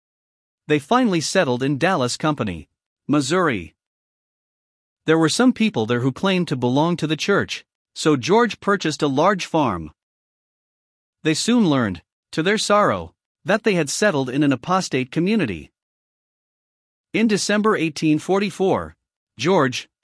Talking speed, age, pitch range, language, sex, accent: 130 wpm, 50-69, 130-190 Hz, English, male, American